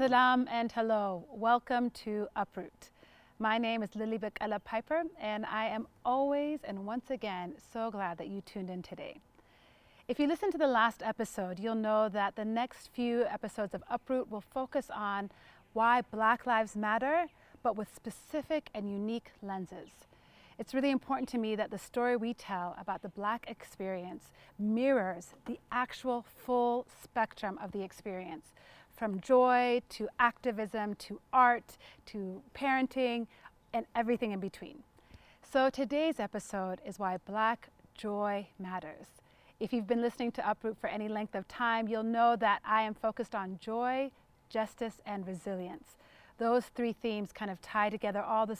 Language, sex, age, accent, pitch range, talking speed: English, female, 30-49, American, 200-240 Hz, 160 wpm